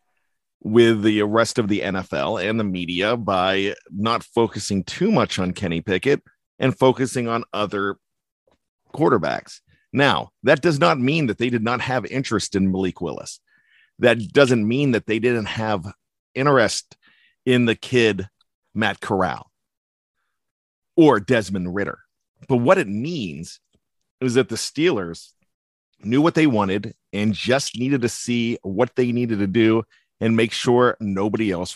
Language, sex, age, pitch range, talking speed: English, male, 40-59, 105-140 Hz, 150 wpm